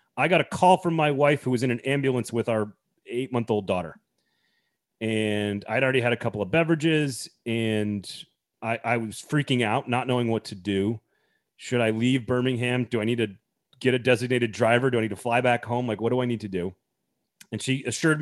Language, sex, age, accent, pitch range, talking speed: English, male, 30-49, American, 110-135 Hz, 210 wpm